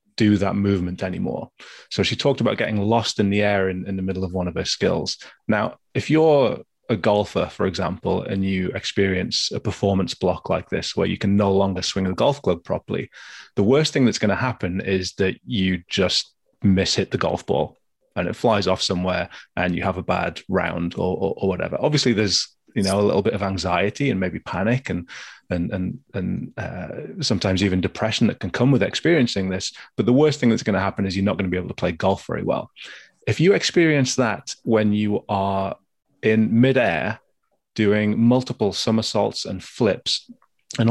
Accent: British